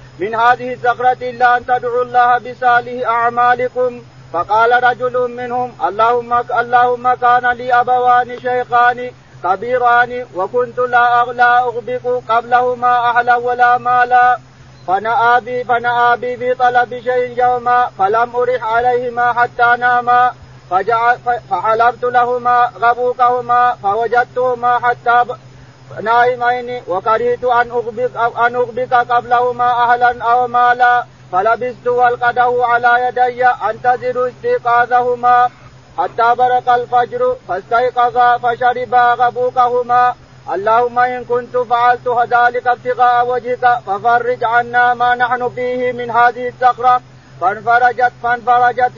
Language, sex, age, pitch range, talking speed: Arabic, male, 40-59, 240-245 Hz, 100 wpm